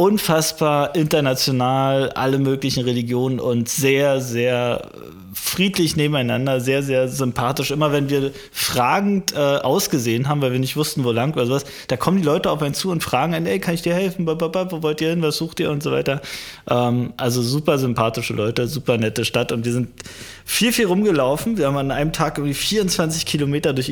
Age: 20-39